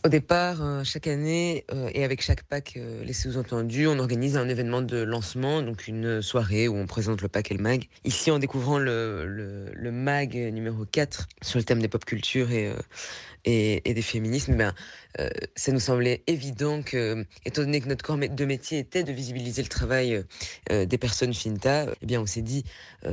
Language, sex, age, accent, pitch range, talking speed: French, female, 20-39, French, 110-170 Hz, 190 wpm